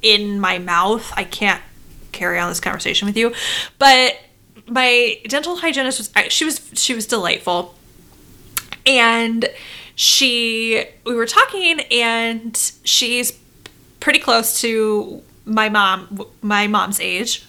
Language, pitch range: English, 210-265 Hz